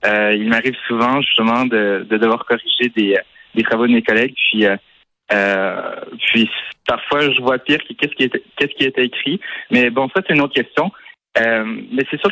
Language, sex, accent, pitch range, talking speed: French, male, French, 110-140 Hz, 205 wpm